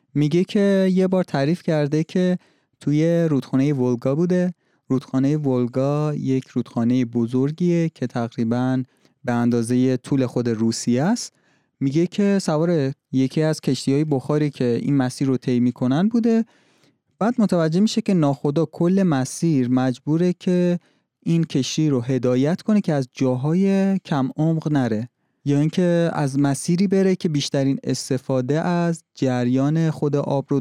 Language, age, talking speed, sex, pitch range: Persian, 30-49, 140 wpm, male, 125-165 Hz